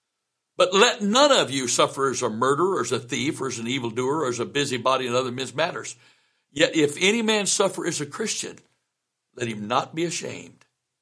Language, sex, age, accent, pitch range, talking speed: English, male, 60-79, American, 120-145 Hz, 200 wpm